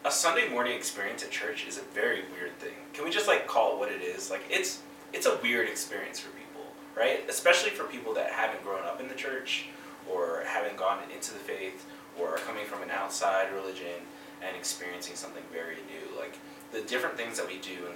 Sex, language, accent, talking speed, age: male, English, American, 215 wpm, 20-39